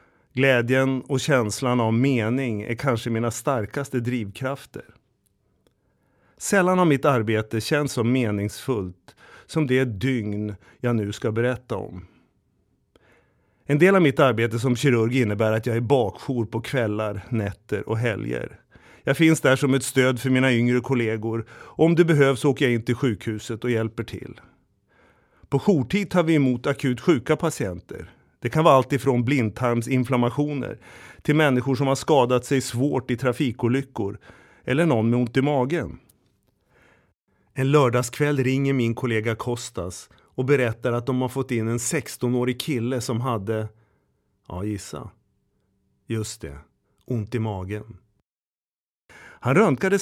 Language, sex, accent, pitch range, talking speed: Swedish, male, native, 115-140 Hz, 145 wpm